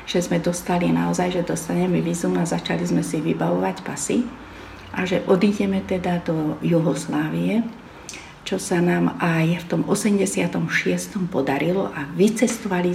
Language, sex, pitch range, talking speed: Slovak, female, 165-190 Hz, 135 wpm